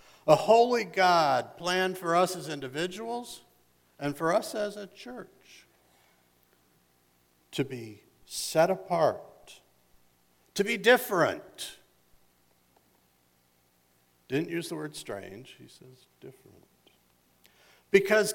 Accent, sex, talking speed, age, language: American, male, 100 wpm, 60-79, English